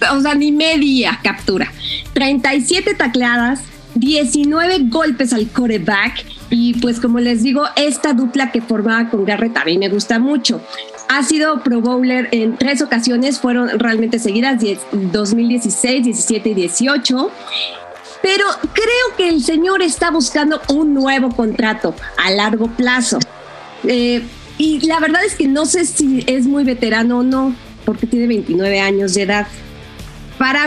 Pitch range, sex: 225-290 Hz, female